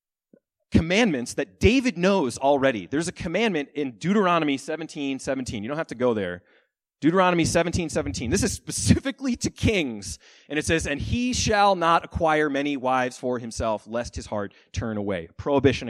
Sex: male